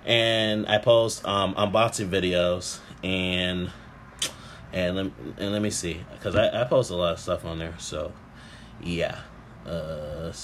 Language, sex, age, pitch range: English, male, 20-39, 90-110 Hz